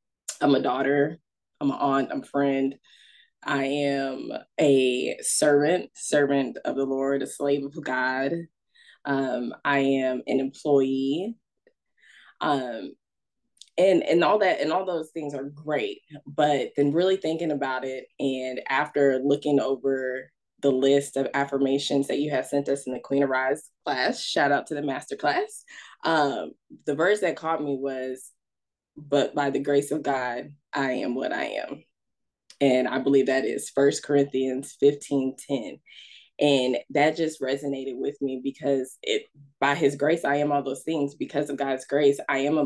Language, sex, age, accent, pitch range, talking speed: English, female, 20-39, American, 135-145 Hz, 165 wpm